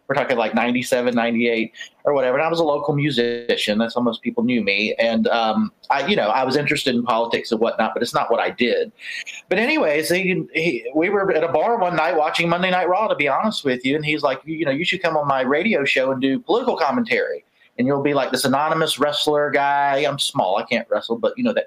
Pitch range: 135-210 Hz